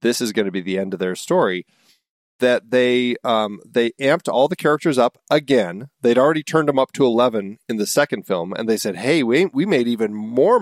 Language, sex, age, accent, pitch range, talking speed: English, male, 40-59, American, 100-135 Hz, 225 wpm